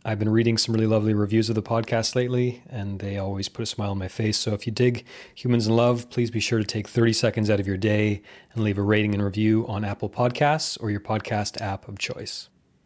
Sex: male